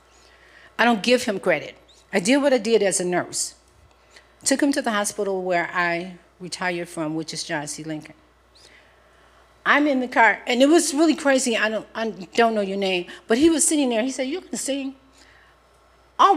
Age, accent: 50-69, American